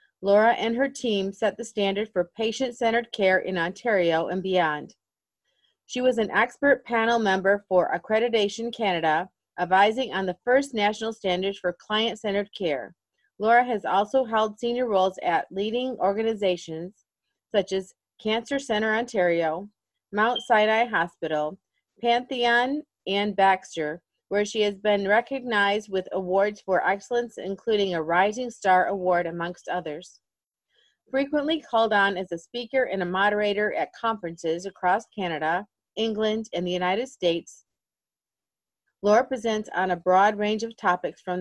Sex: female